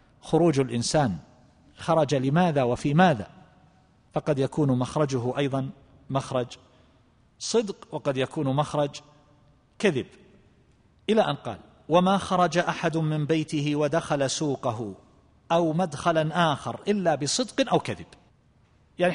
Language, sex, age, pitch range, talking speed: Arabic, male, 50-69, 135-180 Hz, 105 wpm